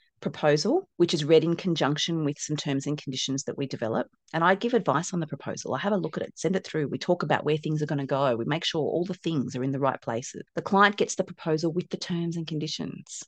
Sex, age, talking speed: female, 30-49, 270 wpm